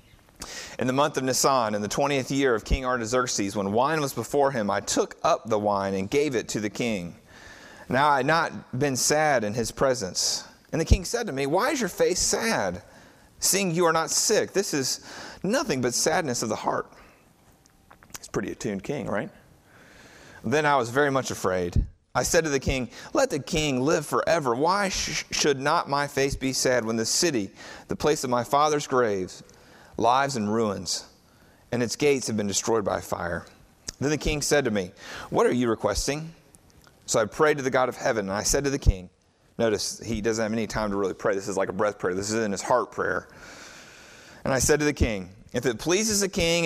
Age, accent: 30-49, American